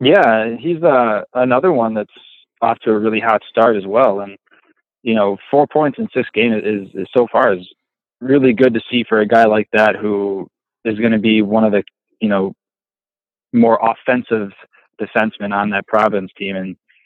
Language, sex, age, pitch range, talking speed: English, male, 20-39, 105-120 Hz, 190 wpm